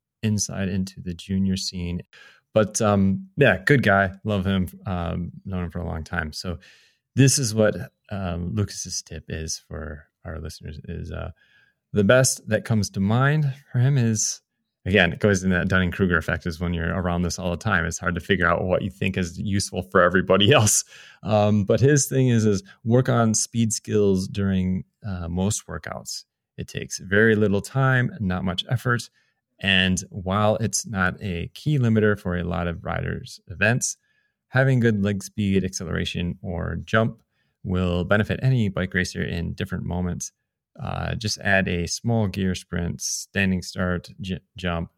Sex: male